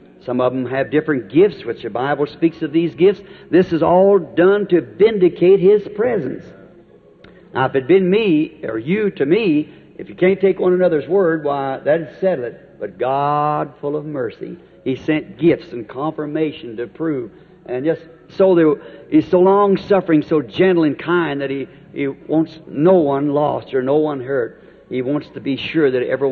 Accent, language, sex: American, English, male